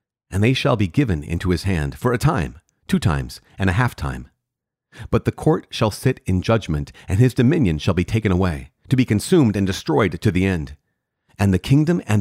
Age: 40-59